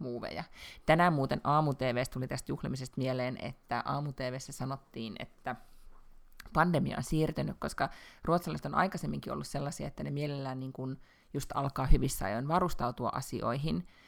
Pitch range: 130-165 Hz